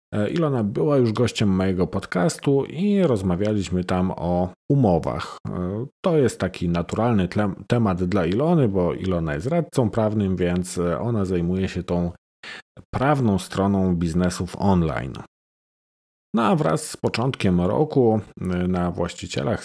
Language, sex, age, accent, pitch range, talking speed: Polish, male, 40-59, native, 95-125 Hz, 120 wpm